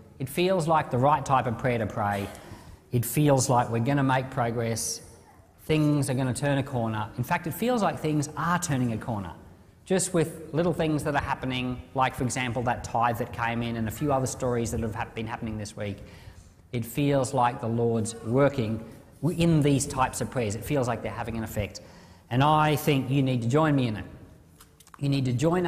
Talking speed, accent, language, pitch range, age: 215 wpm, Australian, English, 115-155 Hz, 40-59